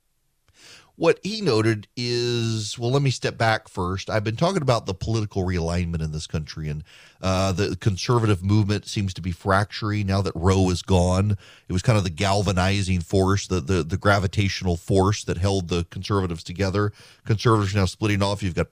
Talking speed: 185 wpm